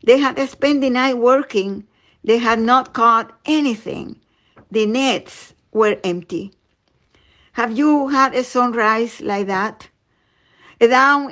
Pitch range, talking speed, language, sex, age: 220-260 Hz, 125 wpm, English, female, 50-69